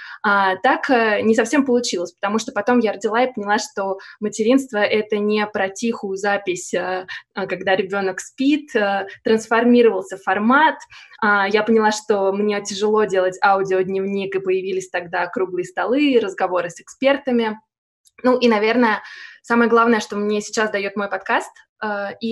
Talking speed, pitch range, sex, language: 135 wpm, 195-230 Hz, female, Russian